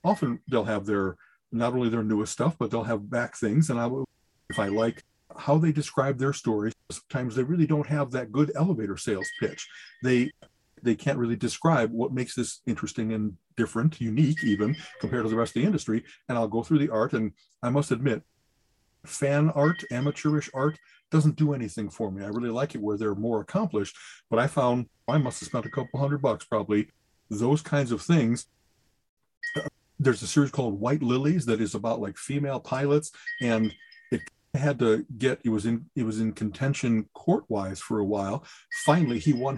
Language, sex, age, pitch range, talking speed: English, male, 40-59, 115-155 Hz, 195 wpm